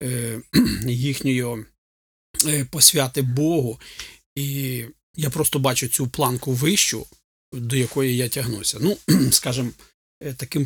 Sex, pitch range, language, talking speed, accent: male, 115-140 Hz, Ukrainian, 95 wpm, native